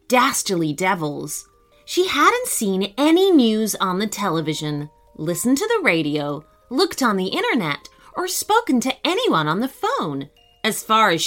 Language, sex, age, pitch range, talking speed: English, female, 30-49, 185-310 Hz, 150 wpm